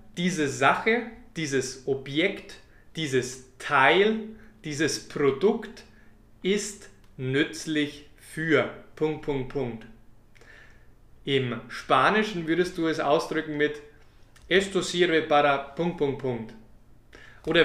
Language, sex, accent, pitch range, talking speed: German, male, German, 135-185 Hz, 75 wpm